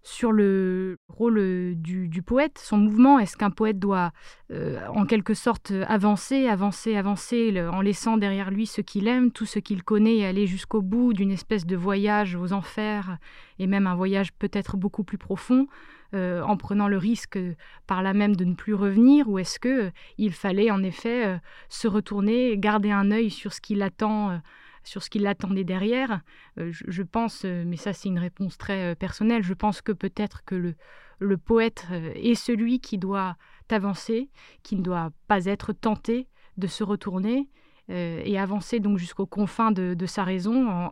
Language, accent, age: French, French, 20-39